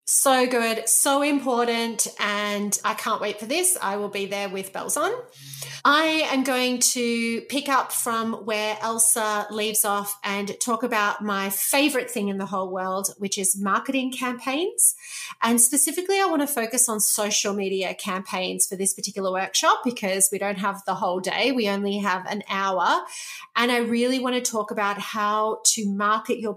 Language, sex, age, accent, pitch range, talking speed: English, female, 30-49, Australian, 200-250 Hz, 180 wpm